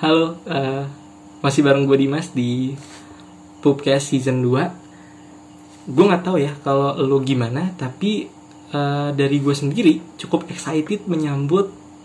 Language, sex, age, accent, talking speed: Indonesian, male, 20-39, native, 125 wpm